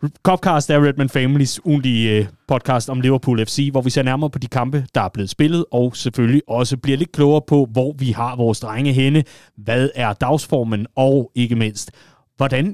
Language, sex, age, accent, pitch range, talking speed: Danish, male, 30-49, native, 115-145 Hz, 190 wpm